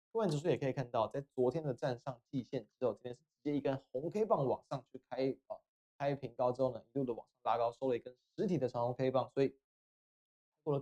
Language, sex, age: Chinese, male, 20-39